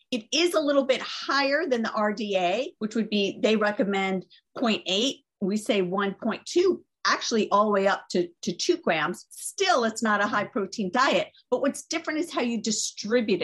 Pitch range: 200-270 Hz